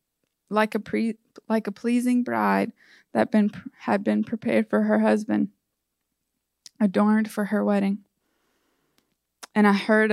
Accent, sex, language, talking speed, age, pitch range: American, female, English, 130 wpm, 20-39, 205-235 Hz